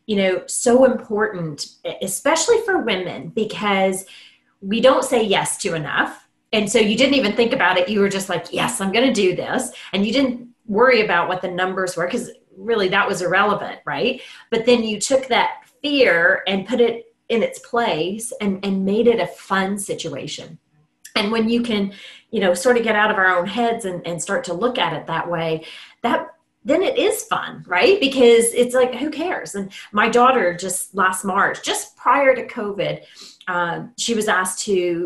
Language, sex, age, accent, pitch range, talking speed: English, female, 30-49, American, 180-235 Hz, 195 wpm